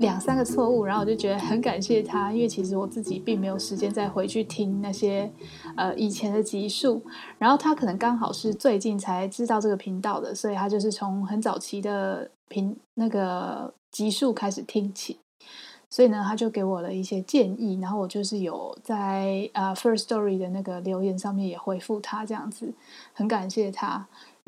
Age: 20-39